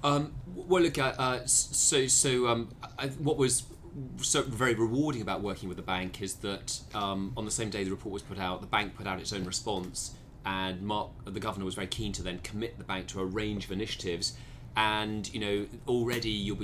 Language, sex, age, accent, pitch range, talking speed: English, male, 30-49, British, 95-120 Hz, 215 wpm